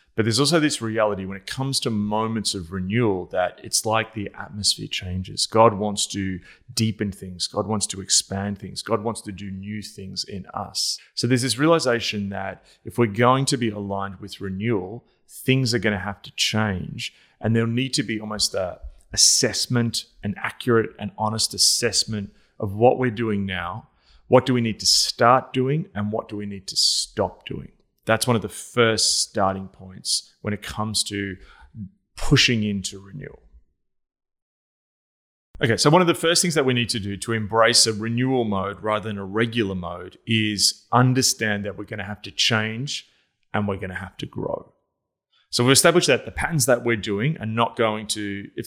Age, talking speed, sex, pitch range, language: 30-49, 190 wpm, male, 100-120 Hz, English